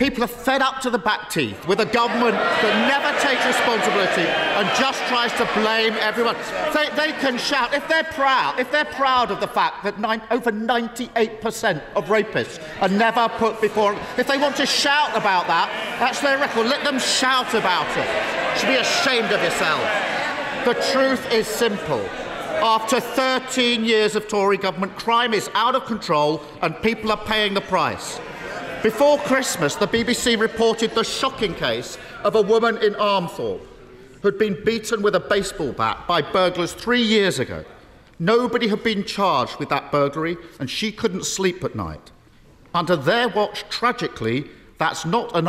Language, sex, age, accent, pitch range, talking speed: English, male, 40-59, British, 195-245 Hz, 175 wpm